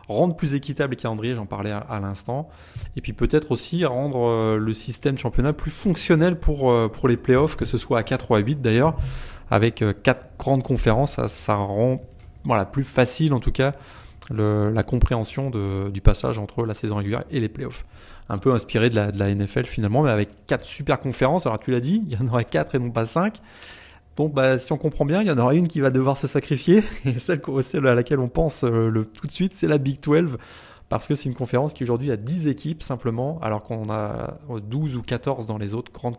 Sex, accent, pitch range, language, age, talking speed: male, French, 110-135 Hz, French, 20-39, 235 wpm